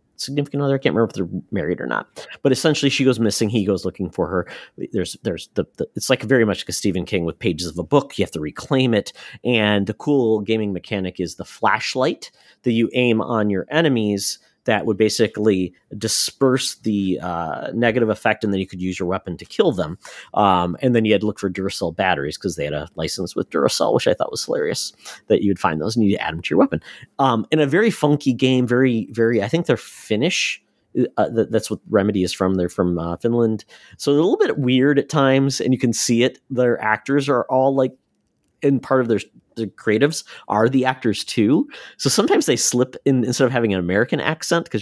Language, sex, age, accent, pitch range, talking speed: English, male, 40-59, American, 100-130 Hz, 230 wpm